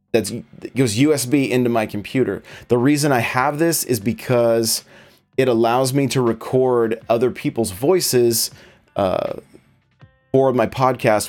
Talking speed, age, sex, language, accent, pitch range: 135 wpm, 30-49, male, English, American, 110-140 Hz